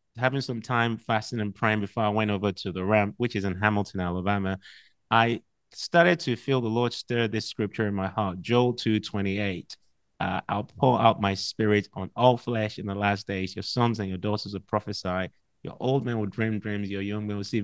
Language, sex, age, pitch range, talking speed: English, male, 30-49, 100-120 Hz, 220 wpm